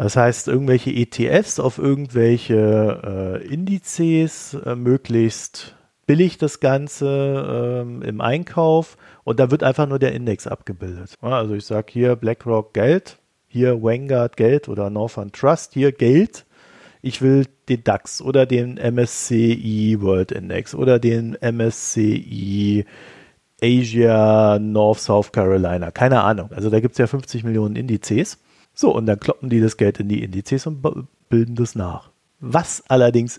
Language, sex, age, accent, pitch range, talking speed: German, male, 40-59, German, 105-135 Hz, 145 wpm